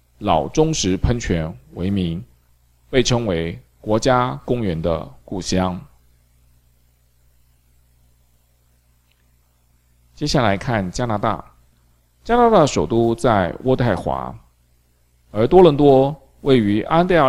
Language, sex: Chinese, male